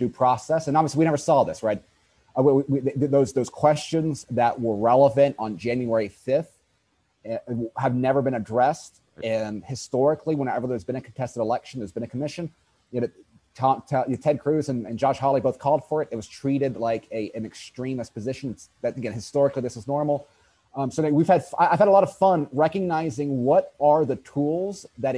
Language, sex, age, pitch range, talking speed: English, male, 30-49, 125-155 Hz, 185 wpm